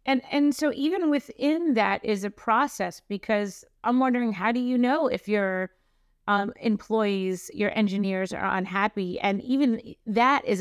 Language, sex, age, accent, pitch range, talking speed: English, female, 30-49, American, 200-240 Hz, 160 wpm